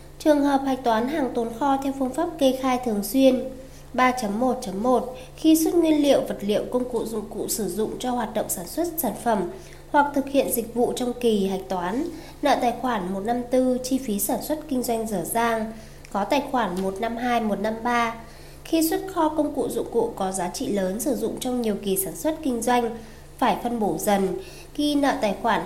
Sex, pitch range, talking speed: female, 215-270 Hz, 205 wpm